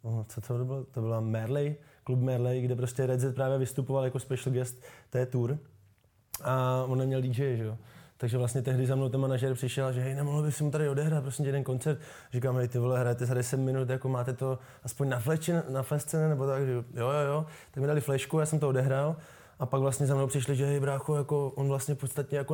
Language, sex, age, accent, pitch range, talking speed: Czech, male, 20-39, native, 125-140 Hz, 230 wpm